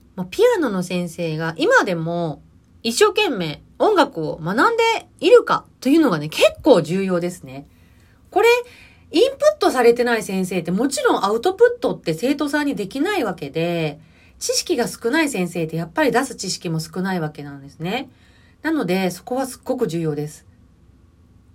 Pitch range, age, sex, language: 165-260 Hz, 30-49, female, Japanese